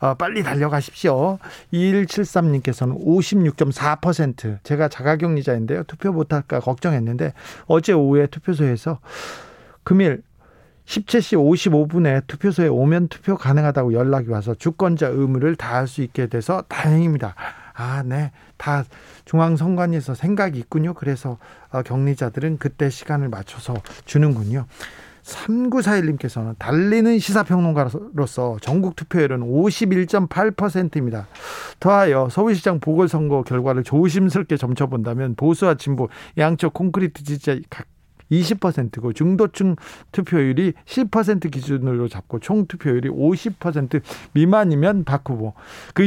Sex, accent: male, native